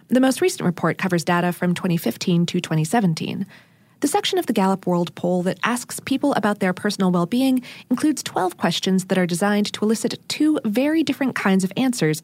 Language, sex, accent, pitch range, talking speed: English, female, American, 185-260 Hz, 185 wpm